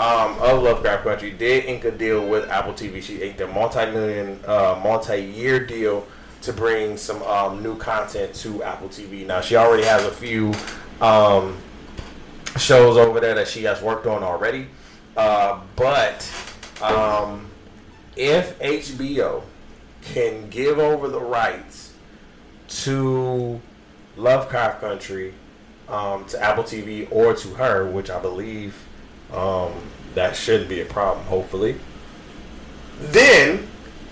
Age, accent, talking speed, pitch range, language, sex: 20-39, American, 130 wpm, 100-125 Hz, English, male